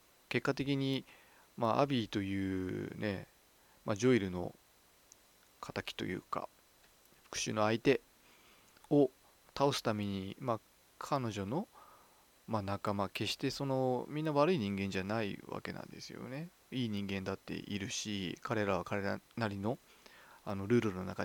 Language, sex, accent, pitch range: Japanese, male, native, 100-130 Hz